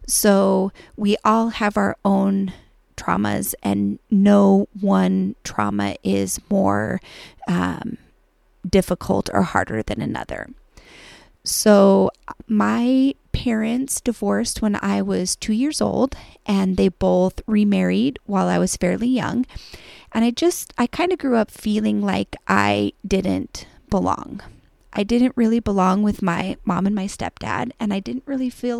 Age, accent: 30-49, American